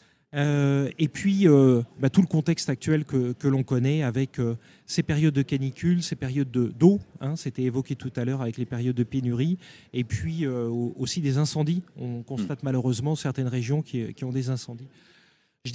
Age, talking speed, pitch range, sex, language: 30-49, 195 wpm, 130-160 Hz, male, French